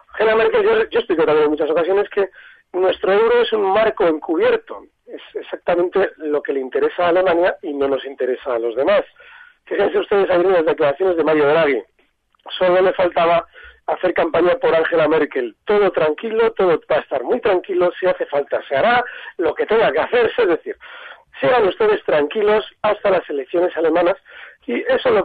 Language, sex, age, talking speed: Spanish, male, 40-59, 180 wpm